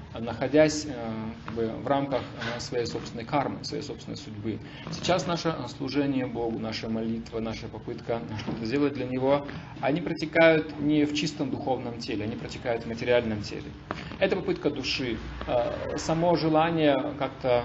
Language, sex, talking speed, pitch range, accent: Russian, male, 135 wpm, 115-155 Hz, native